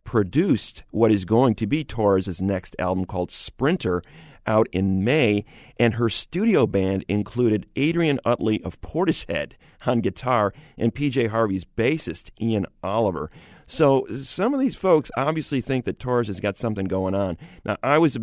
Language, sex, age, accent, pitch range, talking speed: English, male, 40-59, American, 100-125 Hz, 160 wpm